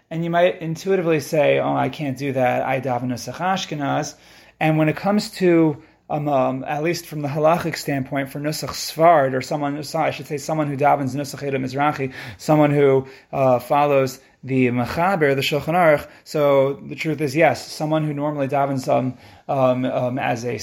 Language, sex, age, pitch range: English, male, 30-49, 130-155 Hz